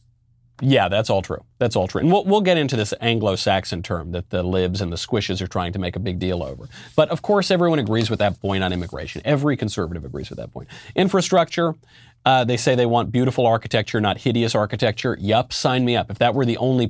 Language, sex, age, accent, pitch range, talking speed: English, male, 30-49, American, 105-135 Hz, 230 wpm